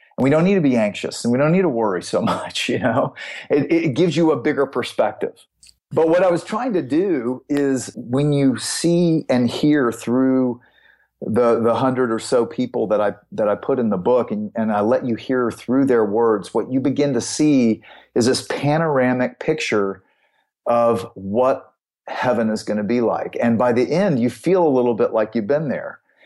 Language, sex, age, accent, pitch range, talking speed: English, male, 40-59, American, 115-145 Hz, 205 wpm